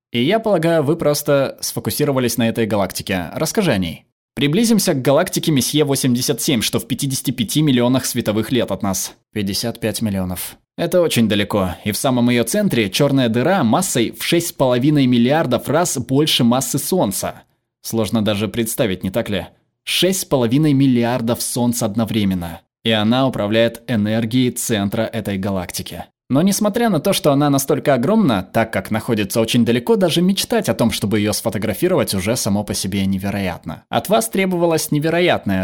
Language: Russian